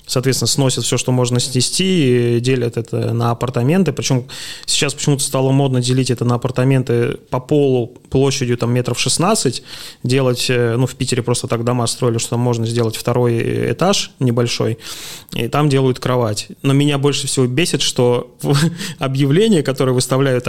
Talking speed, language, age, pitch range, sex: 150 wpm, Russian, 20-39, 120-140 Hz, male